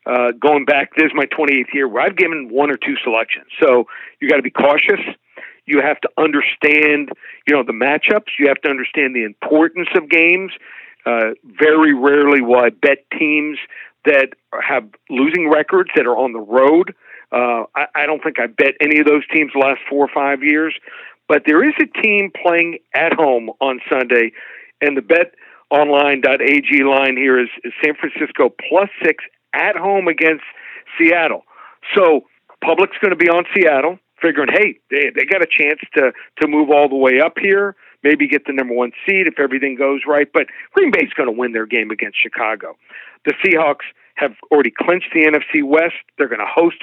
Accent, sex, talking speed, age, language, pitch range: American, male, 190 wpm, 50-69, English, 135-170 Hz